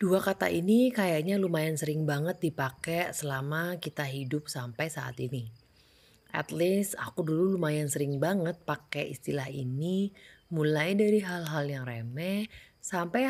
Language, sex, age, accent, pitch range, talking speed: Indonesian, female, 30-49, native, 140-185 Hz, 135 wpm